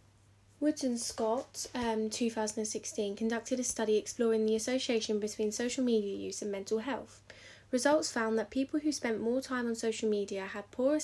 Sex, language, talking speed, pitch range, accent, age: female, English, 170 wpm, 205-240 Hz, British, 20-39